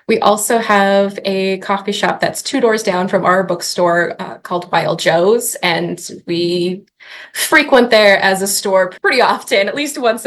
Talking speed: 170 wpm